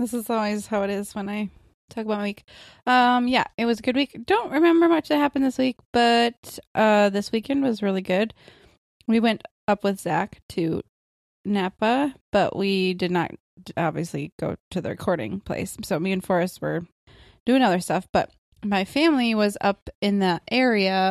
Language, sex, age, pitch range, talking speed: English, female, 20-39, 185-230 Hz, 190 wpm